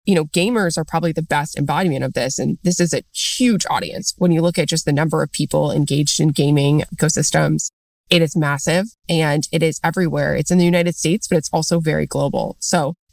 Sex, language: female, English